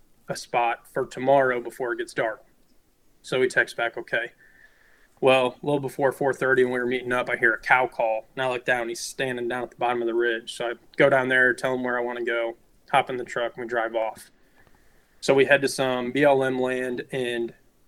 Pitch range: 120-140 Hz